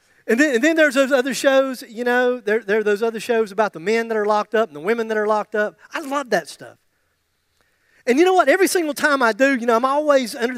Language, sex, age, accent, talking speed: English, male, 40-59, American, 265 wpm